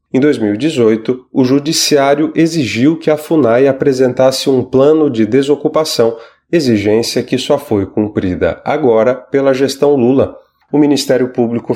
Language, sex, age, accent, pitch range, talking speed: Portuguese, male, 30-49, Brazilian, 125-155 Hz, 130 wpm